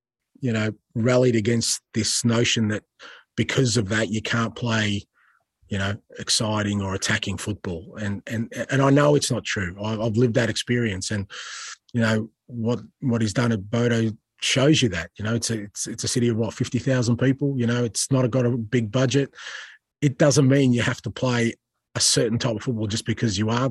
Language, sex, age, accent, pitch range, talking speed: English, male, 30-49, Australian, 105-120 Hz, 200 wpm